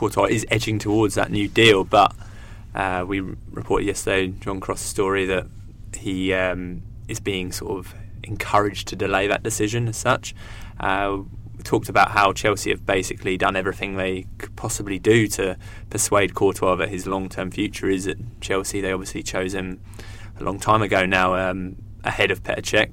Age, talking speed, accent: 20-39, 175 wpm, British